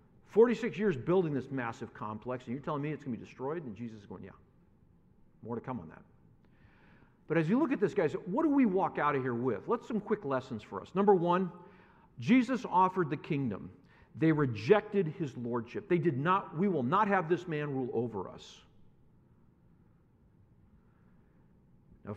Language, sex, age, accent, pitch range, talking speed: English, male, 50-69, American, 115-185 Hz, 185 wpm